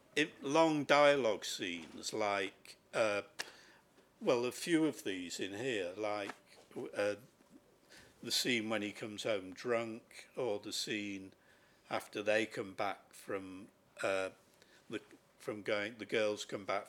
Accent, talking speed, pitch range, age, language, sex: British, 135 wpm, 100-130 Hz, 50-69, English, male